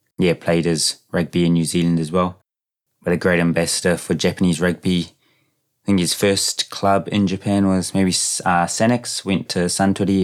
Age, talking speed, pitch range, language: 20-39, 175 wpm, 85-95 Hz, English